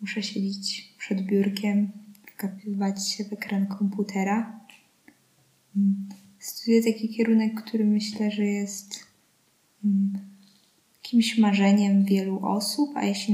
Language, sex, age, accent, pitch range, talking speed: Polish, female, 20-39, native, 195-210 Hz, 100 wpm